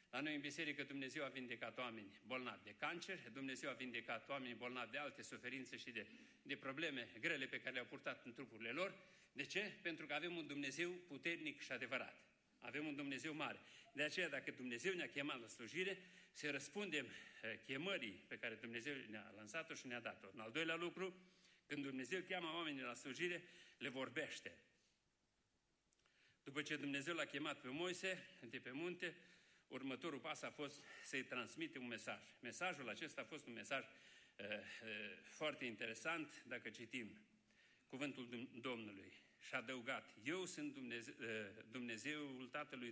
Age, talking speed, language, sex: 60-79, 160 wpm, Romanian, male